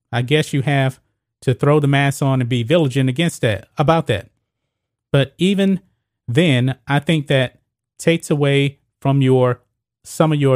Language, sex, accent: English, male, American